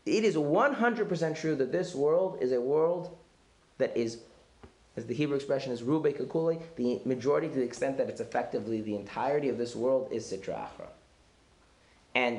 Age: 30-49